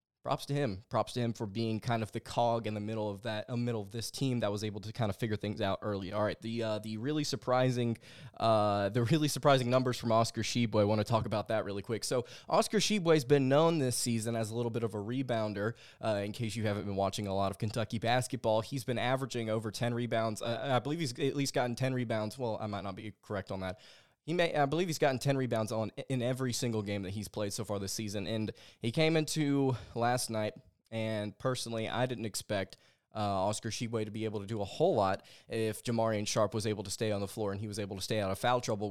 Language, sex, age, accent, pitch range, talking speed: English, male, 20-39, American, 105-125 Hz, 255 wpm